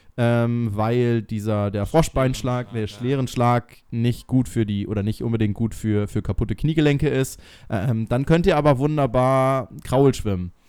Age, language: 20-39, German